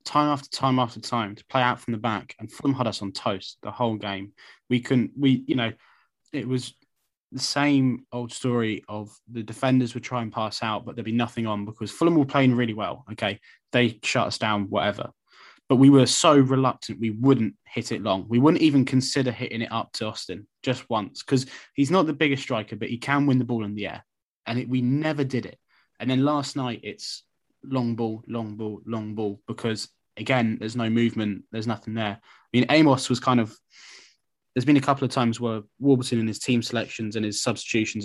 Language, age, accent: English, 20-39, British